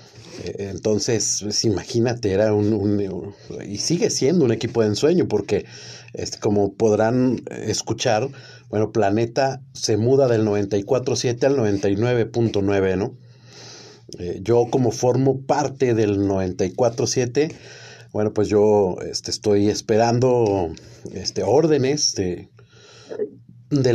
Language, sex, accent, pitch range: Spanish, male, Mexican, 105-130 Hz